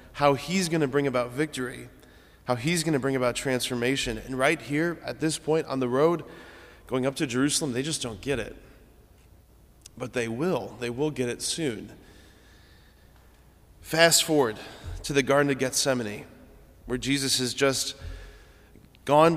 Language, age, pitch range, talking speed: English, 20-39, 120-140 Hz, 160 wpm